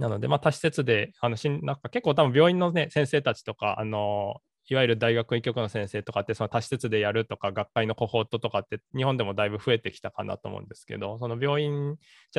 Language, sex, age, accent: Japanese, male, 20-39, native